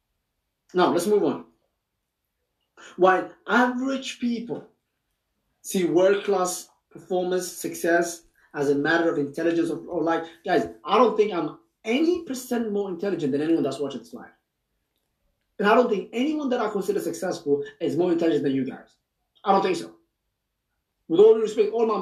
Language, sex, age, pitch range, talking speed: English, male, 30-49, 165-240 Hz, 160 wpm